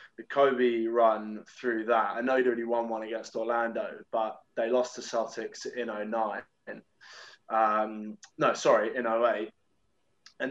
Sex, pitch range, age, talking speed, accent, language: male, 110-125 Hz, 20-39, 150 wpm, British, English